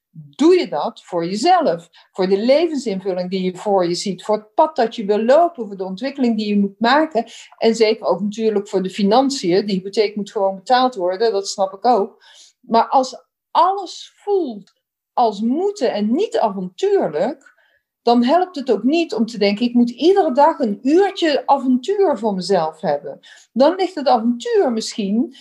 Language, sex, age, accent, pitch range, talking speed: English, female, 50-69, Dutch, 200-270 Hz, 180 wpm